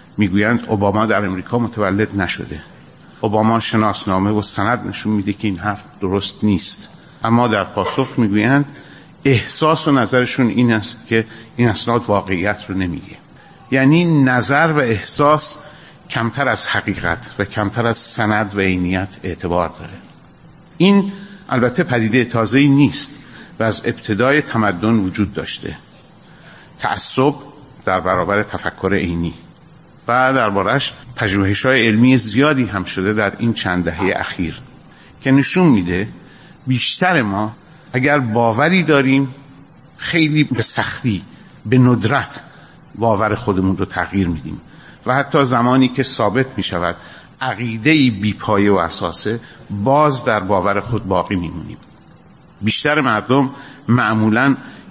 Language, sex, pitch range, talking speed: Persian, male, 100-140 Hz, 125 wpm